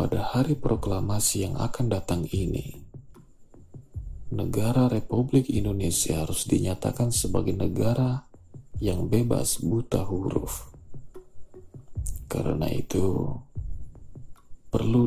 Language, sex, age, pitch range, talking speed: Indonesian, male, 40-59, 95-120 Hz, 85 wpm